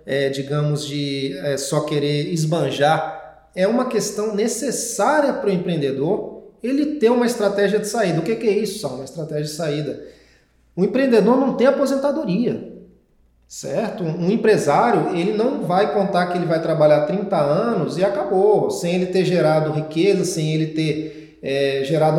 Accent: Brazilian